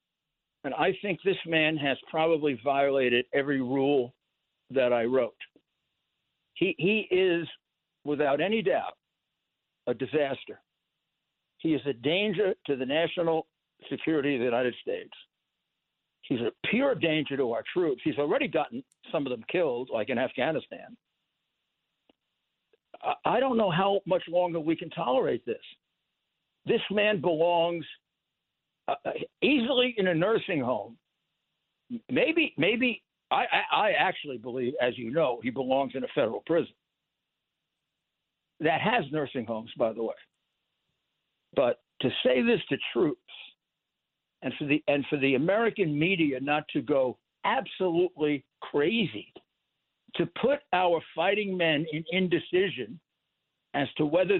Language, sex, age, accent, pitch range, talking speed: English, male, 60-79, American, 140-195 Hz, 135 wpm